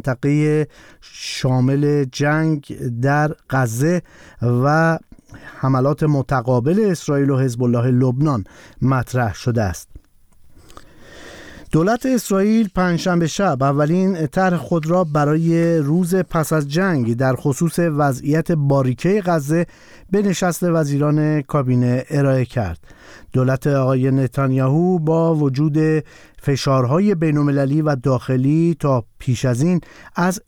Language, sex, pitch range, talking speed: Persian, male, 130-165 Hz, 105 wpm